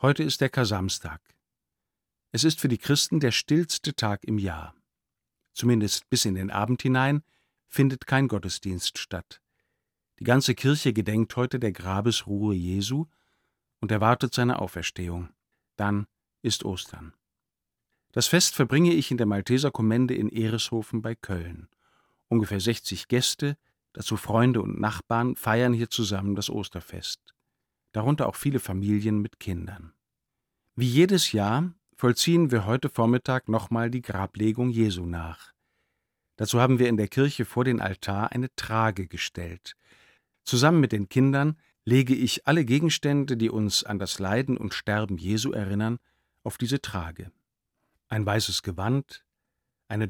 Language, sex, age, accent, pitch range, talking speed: German, male, 50-69, German, 100-130 Hz, 140 wpm